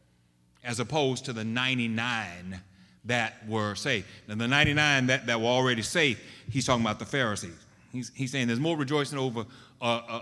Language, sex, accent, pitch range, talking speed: English, male, American, 110-140 Hz, 175 wpm